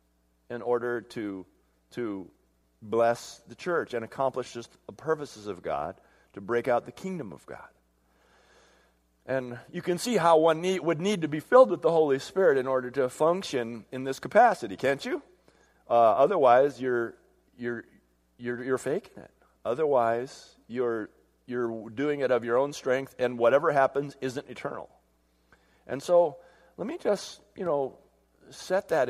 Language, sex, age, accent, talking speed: English, male, 40-59, American, 160 wpm